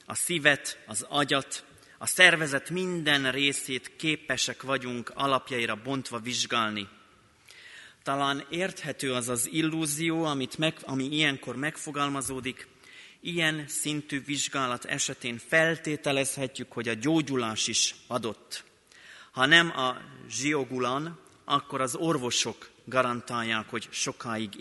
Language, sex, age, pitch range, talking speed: Hungarian, male, 30-49, 125-155 Hz, 100 wpm